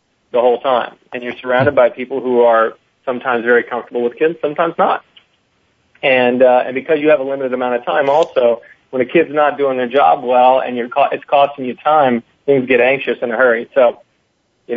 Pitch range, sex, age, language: 120-135 Hz, male, 40-59, English